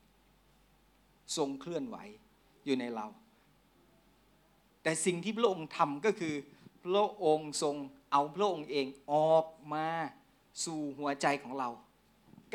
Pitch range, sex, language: 160-235 Hz, male, Thai